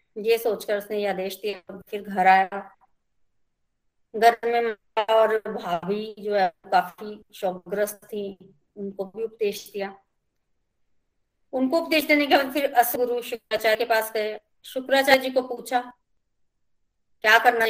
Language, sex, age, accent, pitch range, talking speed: Hindi, female, 20-39, native, 205-245 Hz, 130 wpm